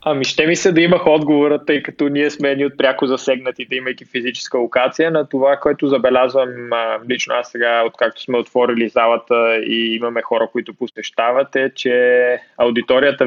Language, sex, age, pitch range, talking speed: Bulgarian, male, 20-39, 120-135 Hz, 165 wpm